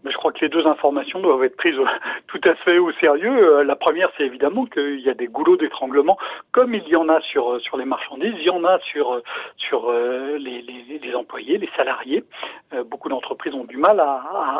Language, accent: French, French